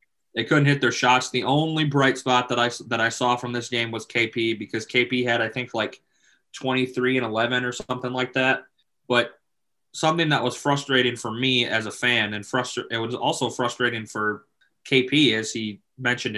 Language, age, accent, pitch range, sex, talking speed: English, 20-39, American, 115-135 Hz, male, 200 wpm